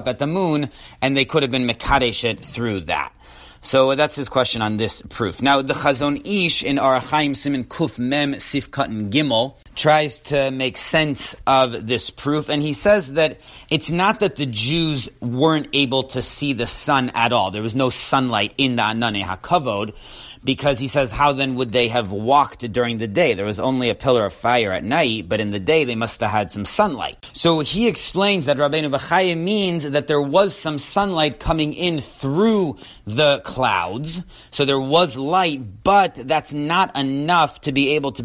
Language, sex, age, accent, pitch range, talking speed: English, male, 30-49, American, 120-150 Hz, 190 wpm